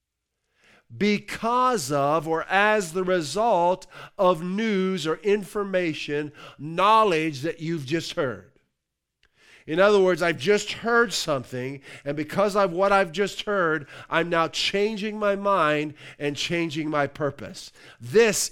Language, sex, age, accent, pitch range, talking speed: English, male, 50-69, American, 135-195 Hz, 125 wpm